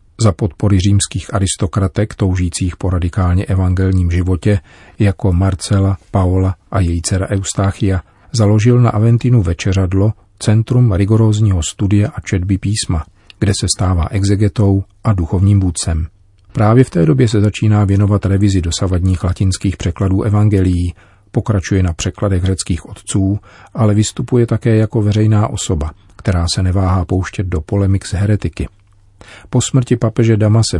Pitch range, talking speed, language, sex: 95-105 Hz, 135 wpm, Czech, male